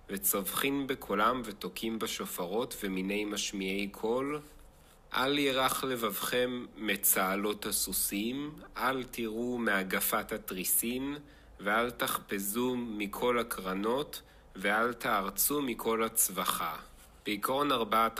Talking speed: 85 wpm